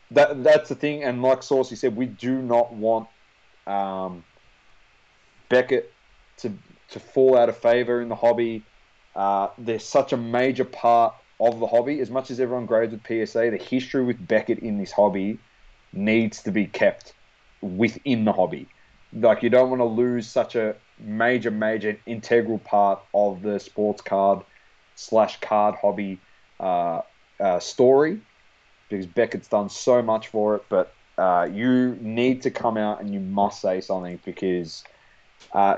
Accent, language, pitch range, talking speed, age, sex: Australian, English, 105-125 Hz, 160 wpm, 20-39, male